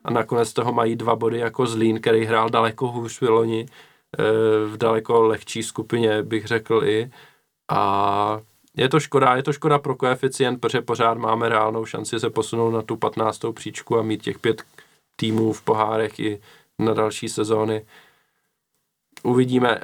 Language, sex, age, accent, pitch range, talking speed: Czech, male, 20-39, native, 110-115 Hz, 155 wpm